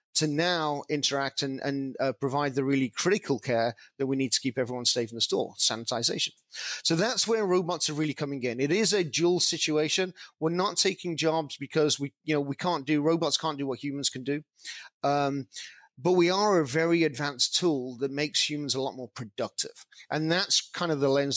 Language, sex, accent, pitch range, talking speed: English, male, British, 140-170 Hz, 210 wpm